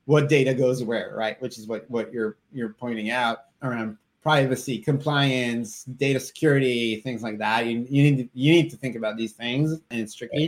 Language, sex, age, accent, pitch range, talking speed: English, male, 20-39, American, 115-145 Hz, 200 wpm